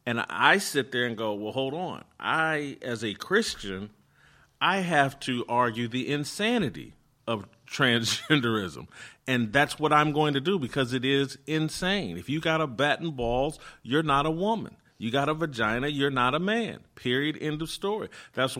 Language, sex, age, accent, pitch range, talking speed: English, male, 40-59, American, 115-155 Hz, 180 wpm